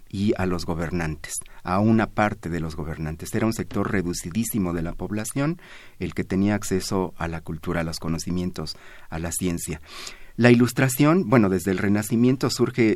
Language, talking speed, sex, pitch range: Spanish, 170 wpm, male, 90-115 Hz